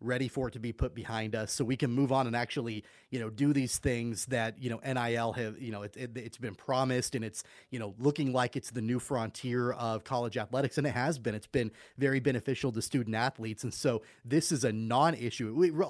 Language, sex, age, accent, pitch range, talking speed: English, male, 30-49, American, 115-140 Hz, 240 wpm